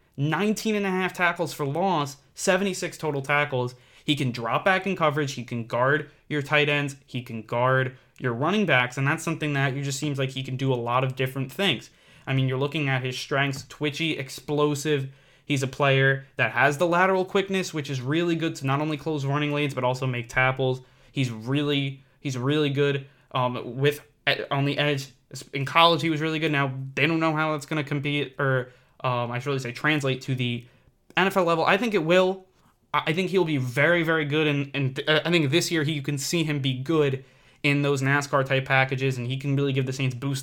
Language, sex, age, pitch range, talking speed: English, male, 20-39, 130-150 Hz, 220 wpm